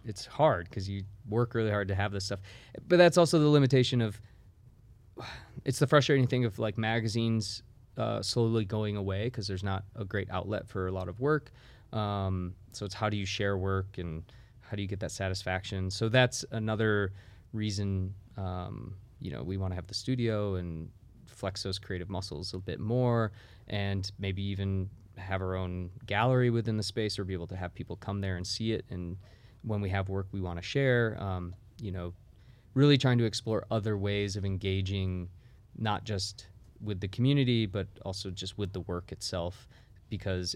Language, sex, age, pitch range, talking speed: English, male, 20-39, 95-115 Hz, 190 wpm